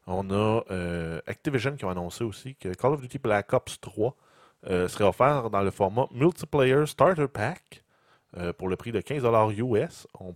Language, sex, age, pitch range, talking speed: French, male, 30-49, 90-115 Hz, 185 wpm